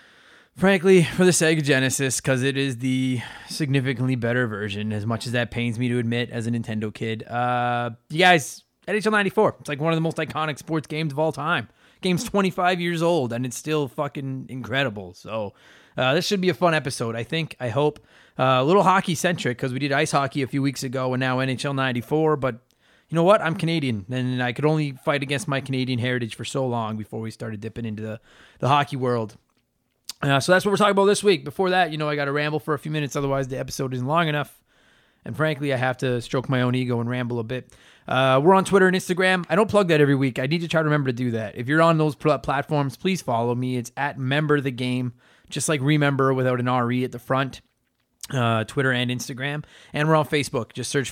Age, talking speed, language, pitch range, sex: 20-39, 230 wpm, English, 125-155 Hz, male